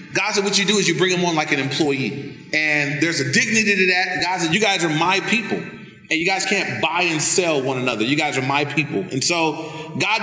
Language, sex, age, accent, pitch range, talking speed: English, male, 30-49, American, 155-190 Hz, 250 wpm